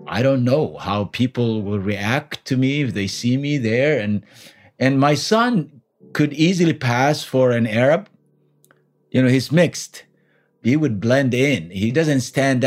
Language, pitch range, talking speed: English, 110-150 Hz, 165 wpm